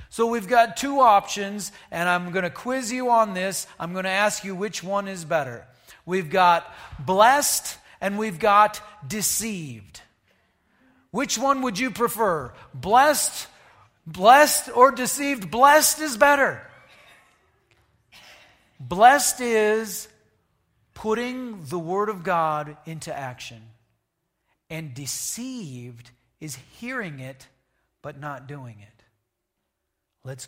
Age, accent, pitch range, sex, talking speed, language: 40-59, American, 160-230 Hz, male, 120 wpm, English